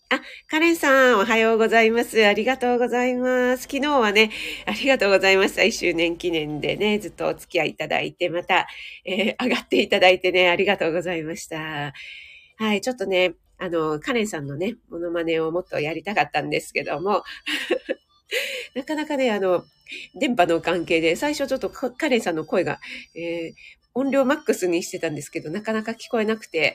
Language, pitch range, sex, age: Japanese, 175-255 Hz, female, 40-59